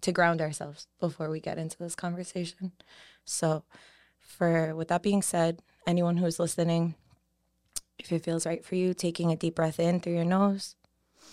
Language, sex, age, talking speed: English, female, 20-39, 170 wpm